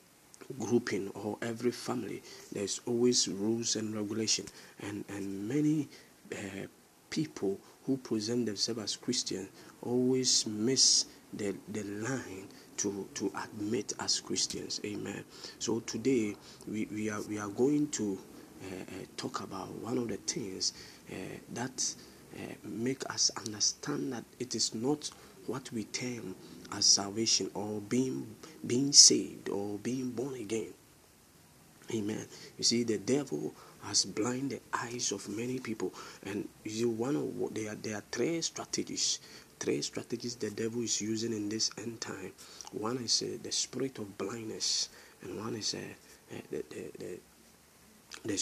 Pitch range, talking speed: 105-120 Hz, 150 wpm